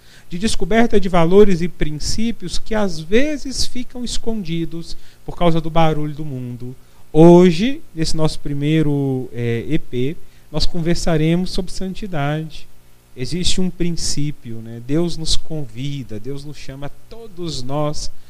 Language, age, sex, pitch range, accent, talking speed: Portuguese, 40-59, male, 145-185 Hz, Brazilian, 125 wpm